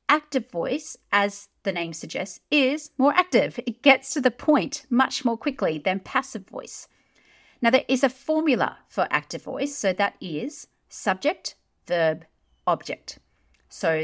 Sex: female